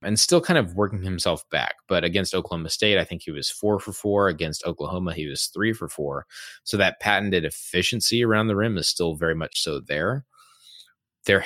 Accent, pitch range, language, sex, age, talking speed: American, 80-100 Hz, English, male, 20-39, 205 wpm